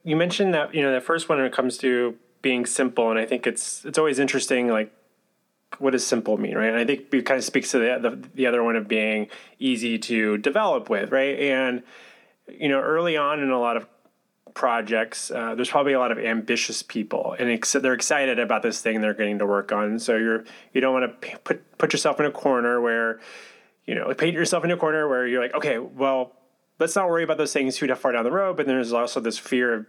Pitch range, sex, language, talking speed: 115-145 Hz, male, English, 240 wpm